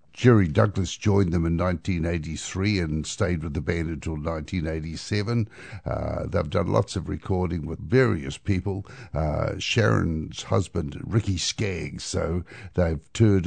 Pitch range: 85-105 Hz